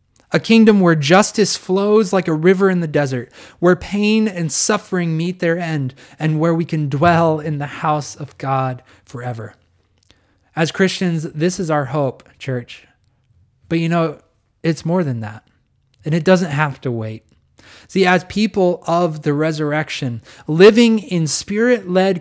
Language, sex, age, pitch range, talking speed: English, male, 20-39, 130-175 Hz, 155 wpm